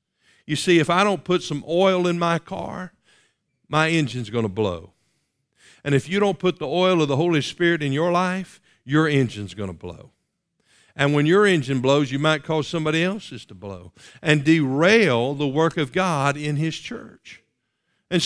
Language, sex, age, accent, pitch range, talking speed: English, male, 50-69, American, 140-185 Hz, 185 wpm